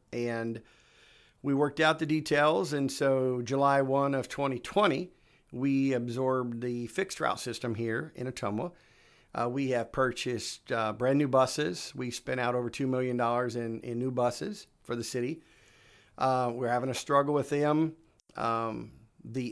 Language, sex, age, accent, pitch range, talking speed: English, male, 50-69, American, 120-145 Hz, 155 wpm